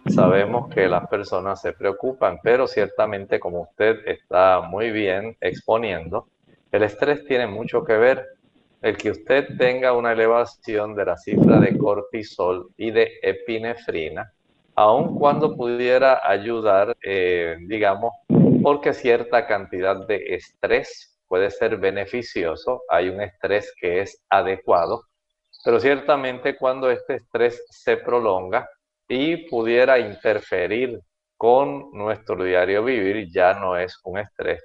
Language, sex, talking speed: Spanish, male, 125 wpm